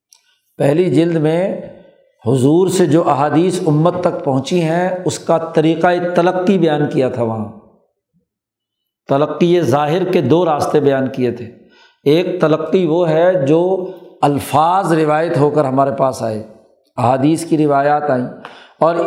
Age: 50-69